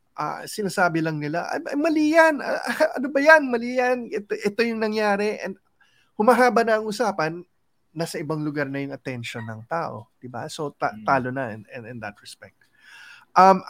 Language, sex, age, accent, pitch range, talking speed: English, male, 20-39, Filipino, 130-185 Hz, 160 wpm